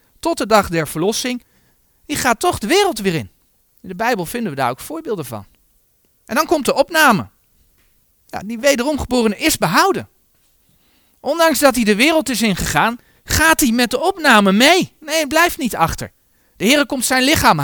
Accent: Dutch